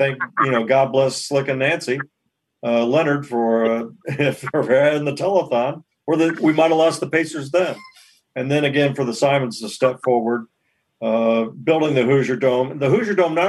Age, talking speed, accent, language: 50-69, 185 wpm, American, English